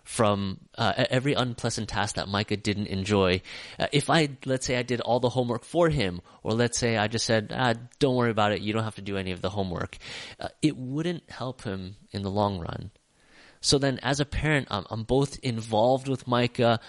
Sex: male